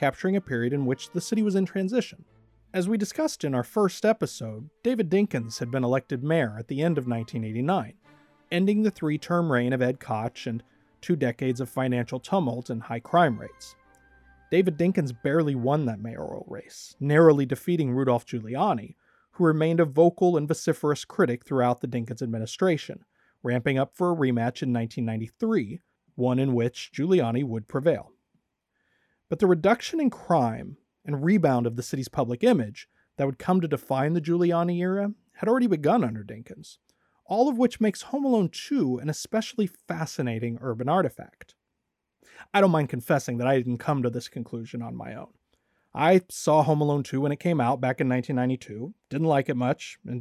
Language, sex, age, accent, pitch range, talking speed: English, male, 40-59, American, 125-180 Hz, 175 wpm